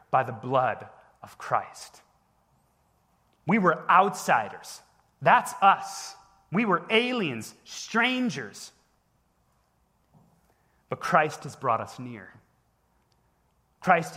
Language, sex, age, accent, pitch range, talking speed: English, male, 30-49, American, 145-210 Hz, 90 wpm